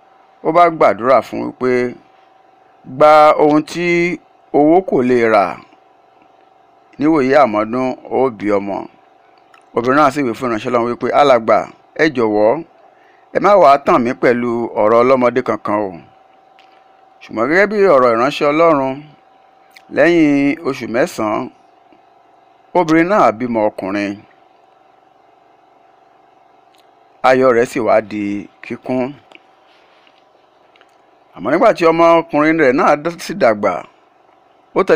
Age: 50-69